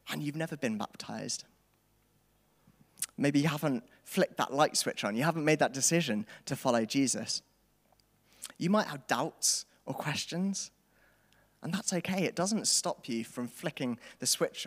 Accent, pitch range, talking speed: British, 125-160 Hz, 155 wpm